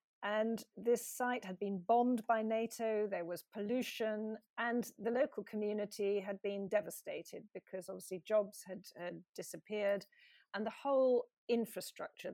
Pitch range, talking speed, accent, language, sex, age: 195-235 Hz, 135 wpm, British, English, female, 40-59